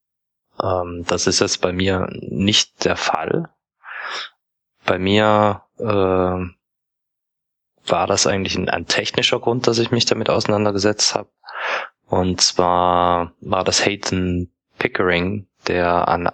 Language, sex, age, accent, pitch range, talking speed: German, male, 20-39, German, 90-105 Hz, 120 wpm